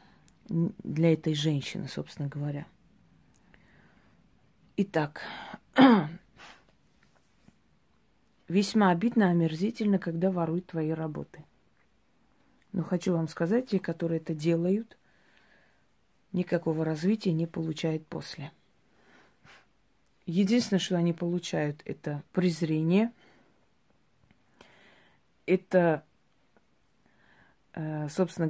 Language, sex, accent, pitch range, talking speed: Russian, female, native, 165-195 Hz, 75 wpm